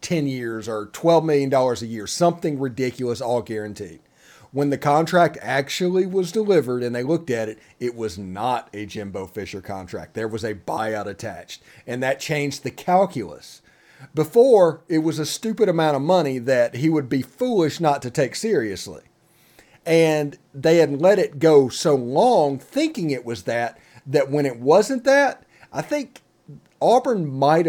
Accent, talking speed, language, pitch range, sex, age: American, 165 wpm, English, 125-170 Hz, male, 40-59